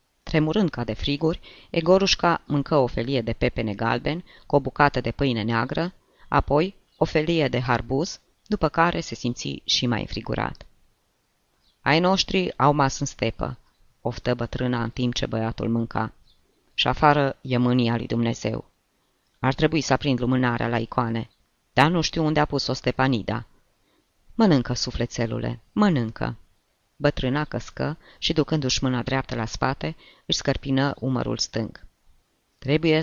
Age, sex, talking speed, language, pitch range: 20-39, female, 140 wpm, Romanian, 115-140 Hz